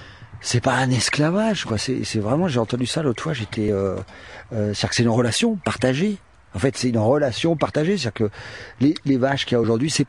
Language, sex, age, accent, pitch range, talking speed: French, male, 40-59, French, 110-145 Hz, 225 wpm